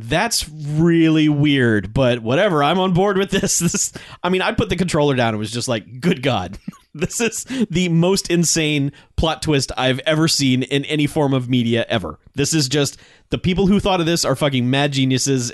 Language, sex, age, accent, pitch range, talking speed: English, male, 30-49, American, 125-170 Hz, 210 wpm